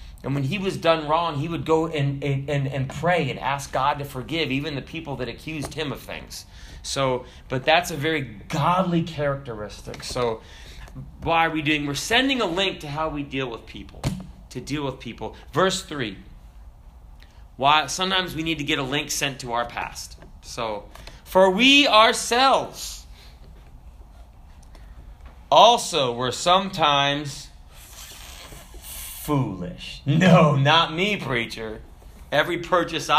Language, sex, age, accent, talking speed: English, male, 30-49, American, 145 wpm